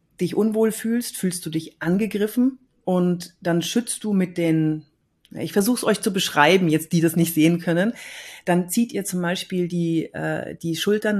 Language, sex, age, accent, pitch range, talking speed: German, female, 40-59, German, 170-210 Hz, 180 wpm